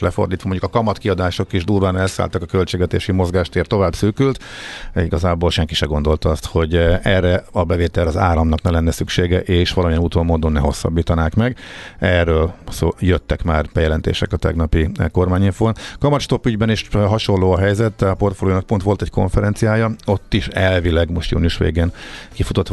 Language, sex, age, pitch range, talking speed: Hungarian, male, 50-69, 85-105 Hz, 160 wpm